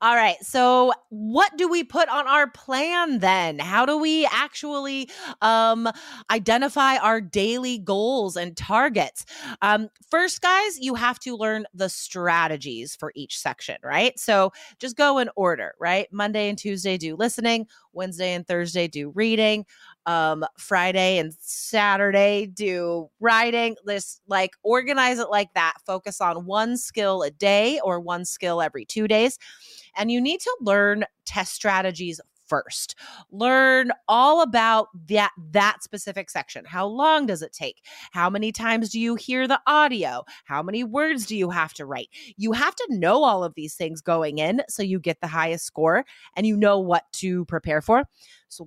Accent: American